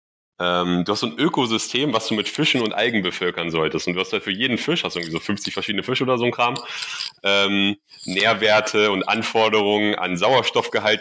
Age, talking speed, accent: 30-49, 205 wpm, German